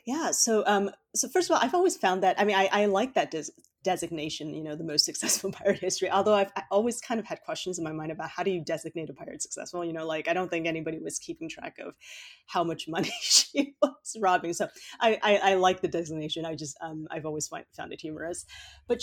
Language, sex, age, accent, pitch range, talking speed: English, female, 30-49, American, 155-210 Hz, 250 wpm